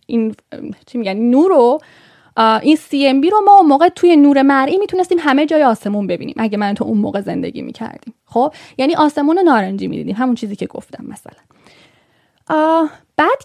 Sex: female